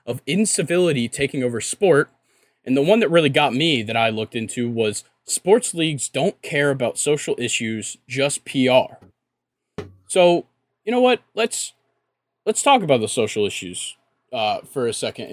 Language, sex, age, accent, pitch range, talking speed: English, male, 20-39, American, 125-160 Hz, 160 wpm